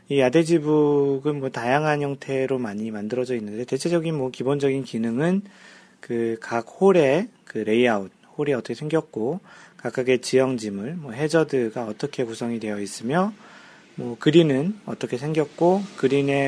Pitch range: 115-150 Hz